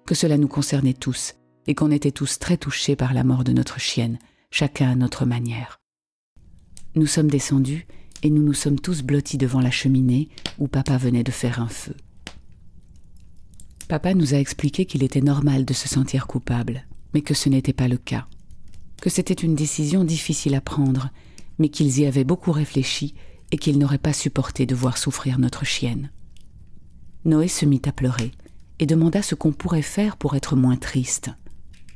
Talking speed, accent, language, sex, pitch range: 180 wpm, French, French, female, 125-155 Hz